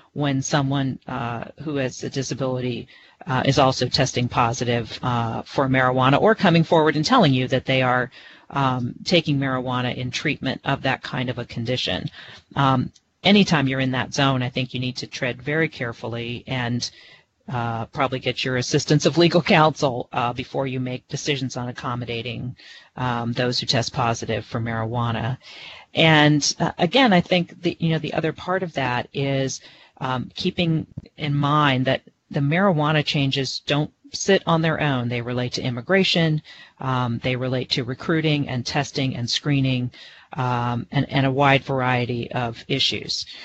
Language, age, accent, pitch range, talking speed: English, 40-59, American, 125-160 Hz, 165 wpm